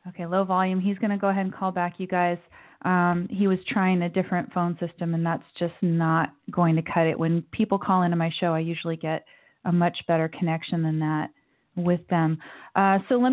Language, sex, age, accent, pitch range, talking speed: English, female, 30-49, American, 170-195 Hz, 220 wpm